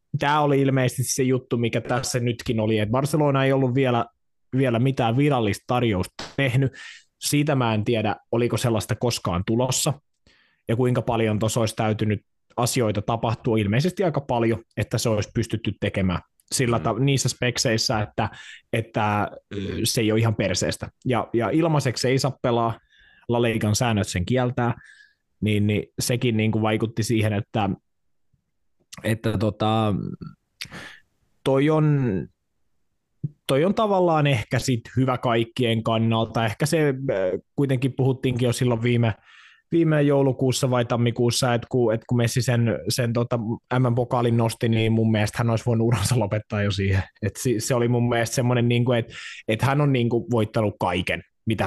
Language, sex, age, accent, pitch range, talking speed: Finnish, male, 20-39, native, 110-130 Hz, 150 wpm